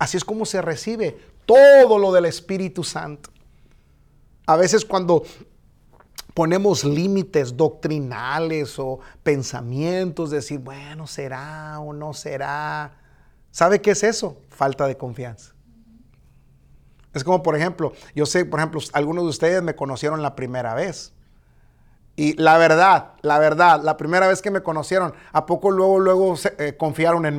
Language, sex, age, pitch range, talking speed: Spanish, male, 40-59, 150-190 Hz, 140 wpm